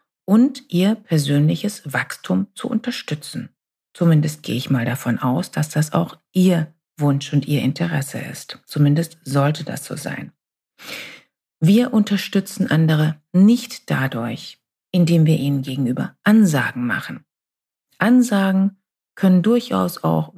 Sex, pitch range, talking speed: female, 150-210 Hz, 120 wpm